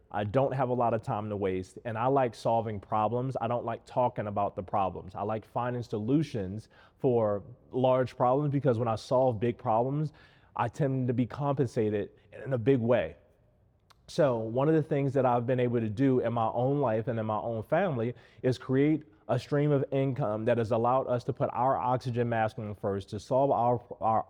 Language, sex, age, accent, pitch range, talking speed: English, male, 30-49, American, 110-140 Hz, 205 wpm